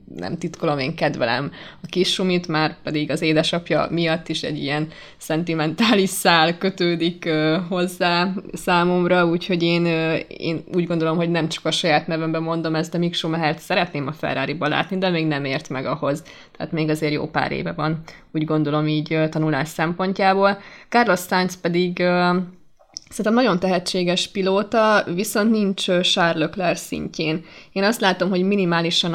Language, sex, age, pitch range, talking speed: Hungarian, female, 20-39, 160-190 Hz, 150 wpm